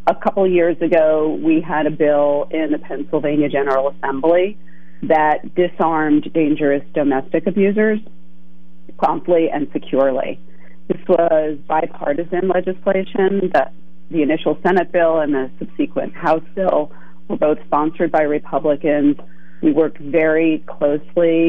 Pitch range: 135-175 Hz